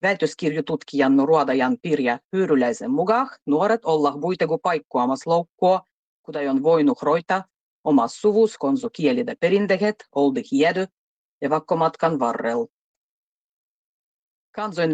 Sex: female